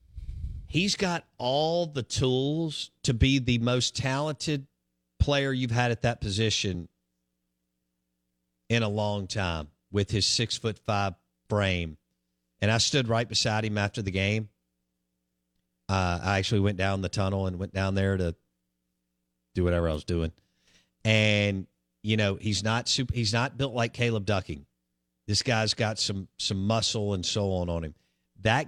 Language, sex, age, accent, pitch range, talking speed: English, male, 50-69, American, 90-115 Hz, 155 wpm